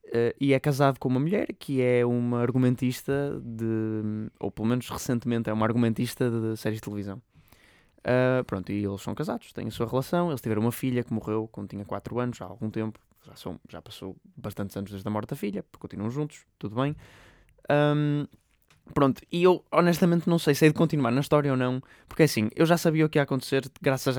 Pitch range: 115-150 Hz